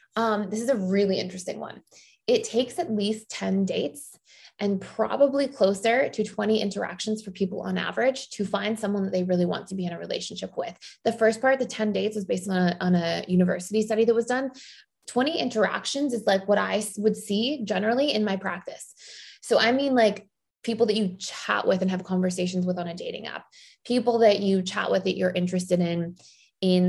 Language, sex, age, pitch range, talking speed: English, female, 20-39, 185-230 Hz, 205 wpm